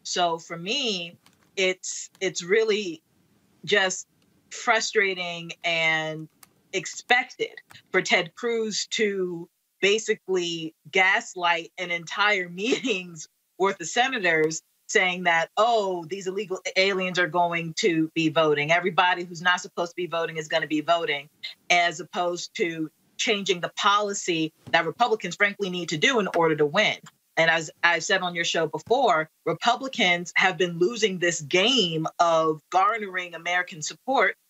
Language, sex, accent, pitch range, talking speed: English, female, American, 165-195 Hz, 135 wpm